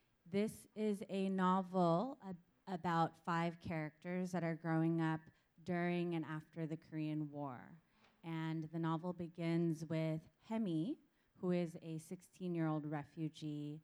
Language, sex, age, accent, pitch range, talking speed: English, female, 30-49, American, 160-180 Hz, 130 wpm